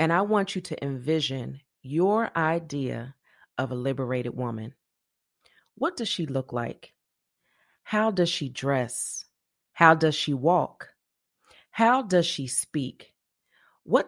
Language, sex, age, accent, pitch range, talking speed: English, female, 30-49, American, 135-195 Hz, 130 wpm